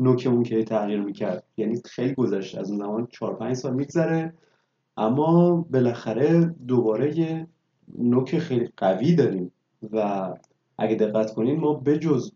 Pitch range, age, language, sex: 120-155 Hz, 30-49, Persian, male